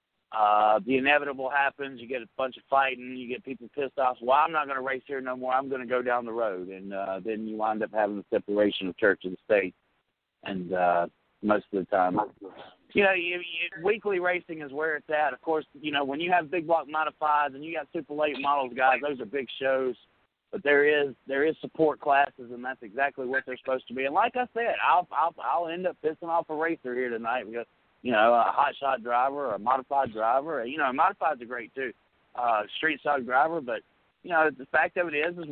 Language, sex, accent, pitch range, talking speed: English, male, American, 125-160 Hz, 235 wpm